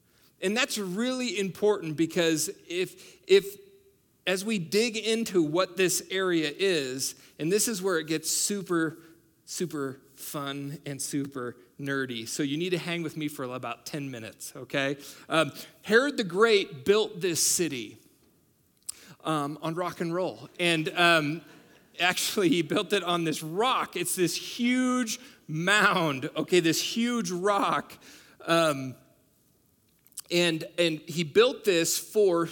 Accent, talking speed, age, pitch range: American, 140 wpm, 40-59, 160-215 Hz